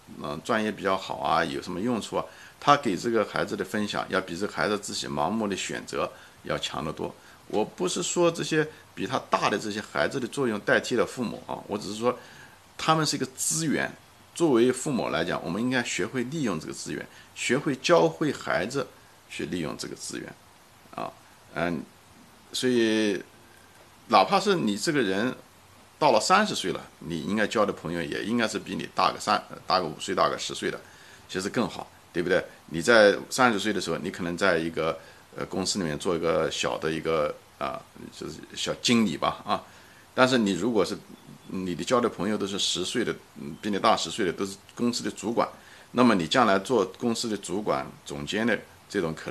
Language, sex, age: Chinese, male, 50-69